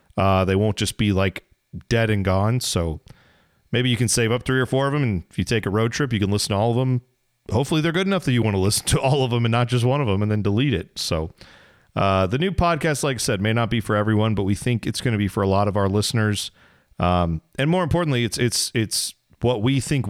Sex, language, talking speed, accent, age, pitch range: male, English, 280 wpm, American, 40-59, 100-125 Hz